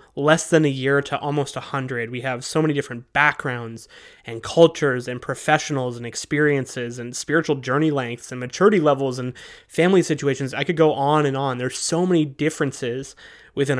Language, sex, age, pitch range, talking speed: English, male, 20-39, 125-150 Hz, 180 wpm